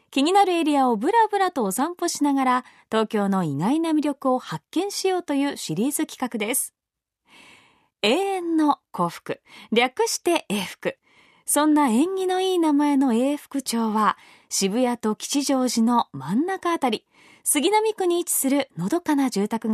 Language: Japanese